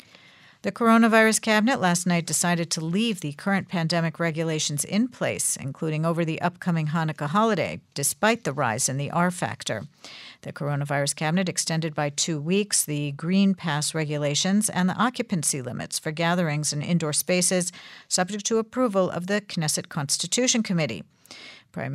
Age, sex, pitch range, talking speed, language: 50-69, female, 155-195 Hz, 155 wpm, English